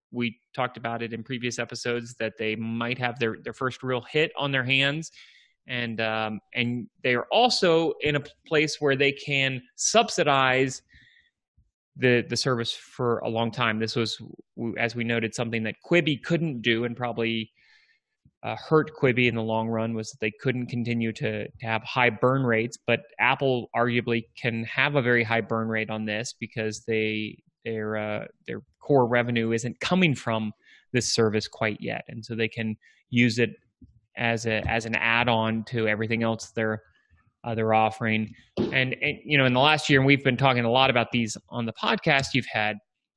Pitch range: 115-140 Hz